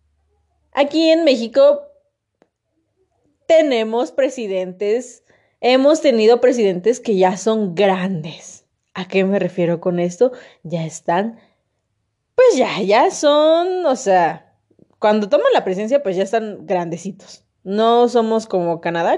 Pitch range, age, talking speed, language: 175-250 Hz, 20-39, 120 wpm, Spanish